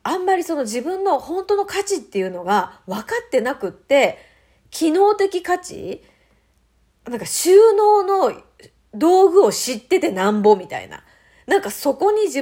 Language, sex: Japanese, female